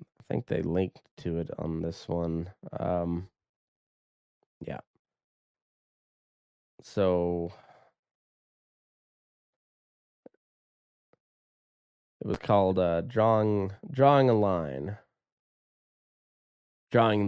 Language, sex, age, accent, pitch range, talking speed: English, male, 20-39, American, 85-100 Hz, 70 wpm